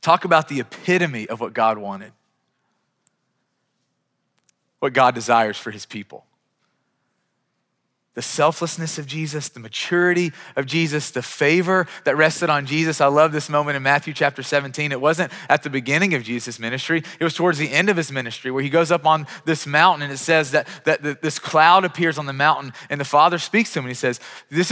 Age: 30-49